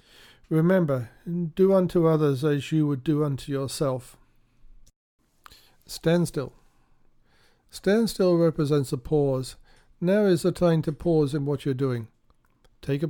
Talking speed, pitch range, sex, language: 125 wpm, 140-165 Hz, male, English